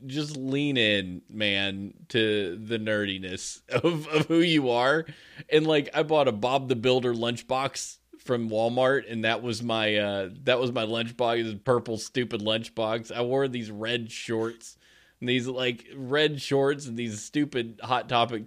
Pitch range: 115-165 Hz